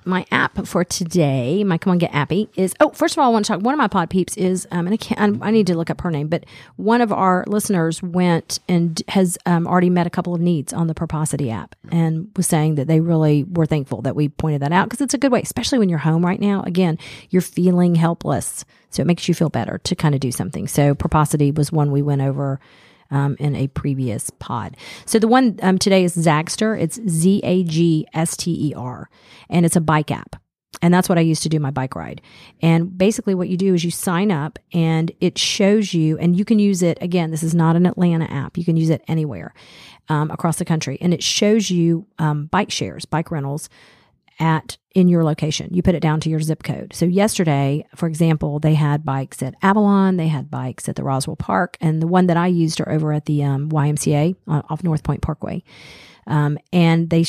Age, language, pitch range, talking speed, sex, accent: 40-59, English, 155-185 Hz, 230 wpm, female, American